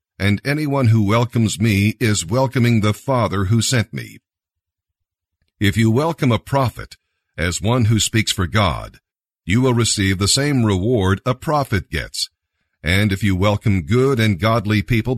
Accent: American